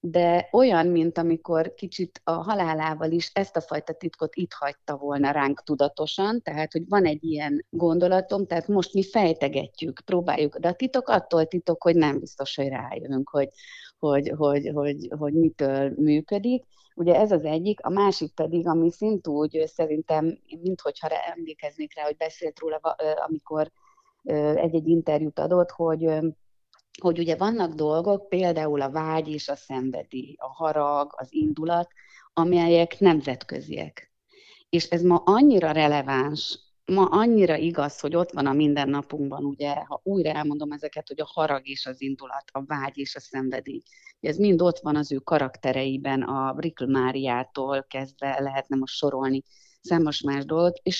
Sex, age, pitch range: female, 30-49, 140-170 Hz